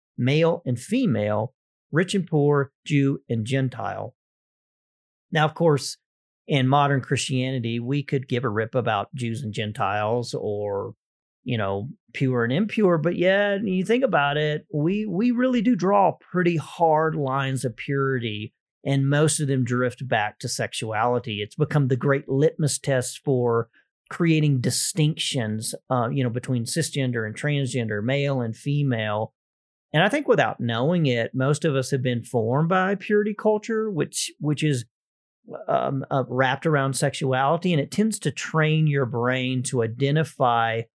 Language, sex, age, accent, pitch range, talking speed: English, male, 40-59, American, 120-155 Hz, 155 wpm